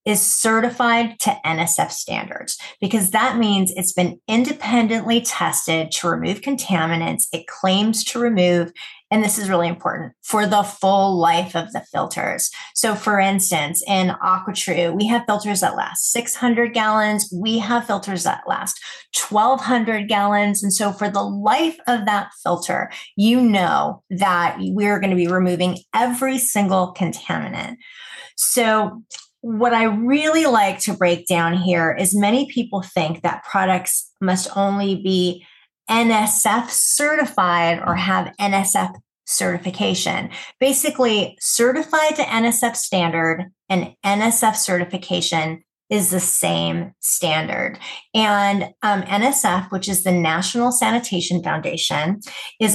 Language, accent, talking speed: English, American, 130 wpm